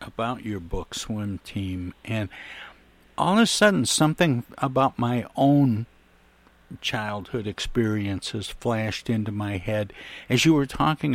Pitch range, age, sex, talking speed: 110-145 Hz, 60-79, male, 130 wpm